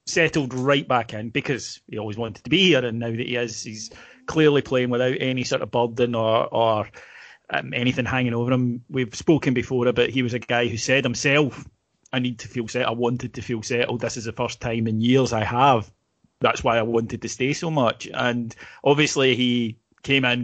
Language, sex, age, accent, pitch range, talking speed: English, male, 30-49, British, 120-140 Hz, 215 wpm